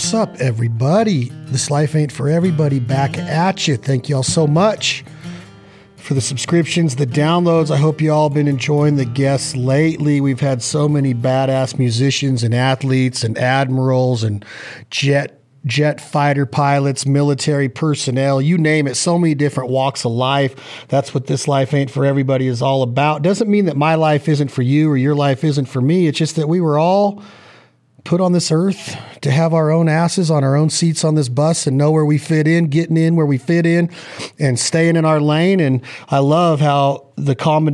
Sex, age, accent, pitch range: male, 40-59, American, 130-155 Hz